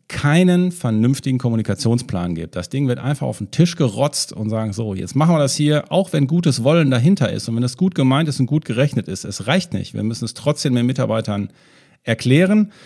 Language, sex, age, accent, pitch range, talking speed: German, male, 40-59, German, 115-170 Hz, 215 wpm